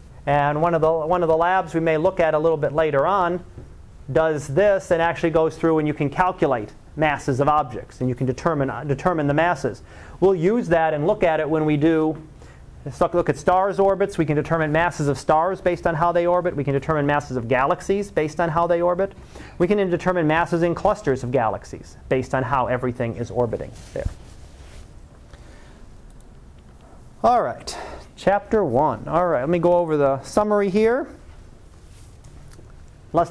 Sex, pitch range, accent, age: male, 135-185 Hz, American, 40-59